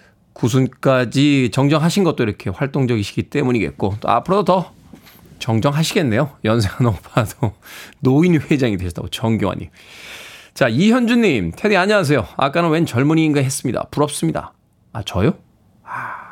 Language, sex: Korean, male